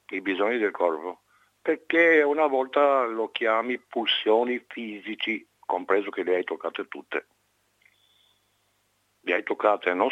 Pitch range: 105-160 Hz